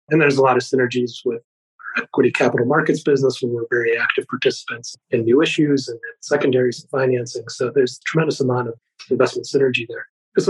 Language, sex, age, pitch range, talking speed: English, male, 30-49, 130-150 Hz, 195 wpm